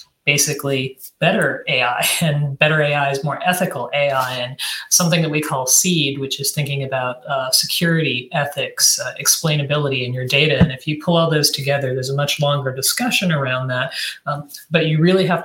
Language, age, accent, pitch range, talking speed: English, 30-49, American, 135-165 Hz, 185 wpm